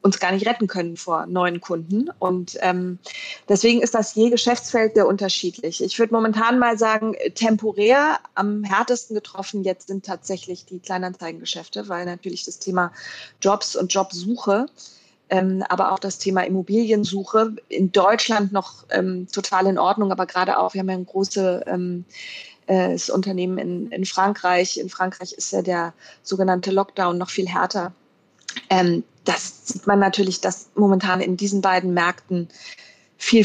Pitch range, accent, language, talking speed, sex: 185-215 Hz, German, German, 150 wpm, female